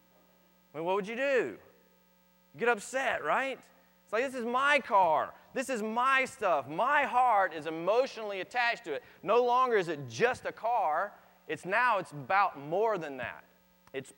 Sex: male